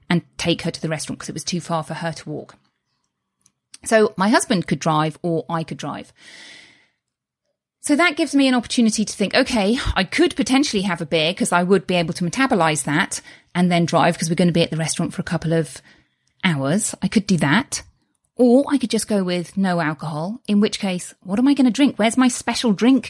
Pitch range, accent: 165-230 Hz, British